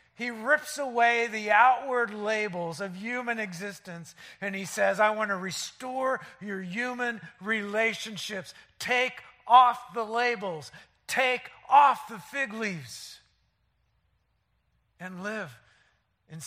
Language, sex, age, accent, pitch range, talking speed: English, male, 50-69, American, 150-230 Hz, 115 wpm